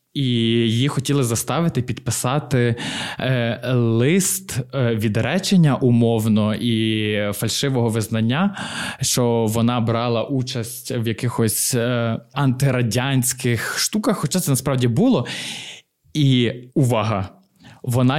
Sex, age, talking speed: male, 20-39, 95 wpm